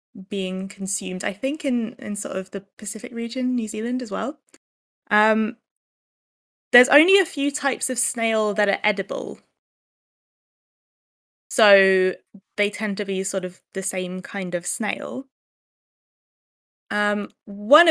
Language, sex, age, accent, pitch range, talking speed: English, female, 20-39, British, 190-240 Hz, 135 wpm